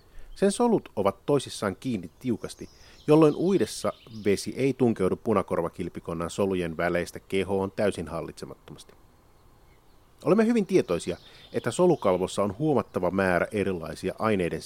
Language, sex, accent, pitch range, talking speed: Finnish, male, native, 95-125 Hz, 110 wpm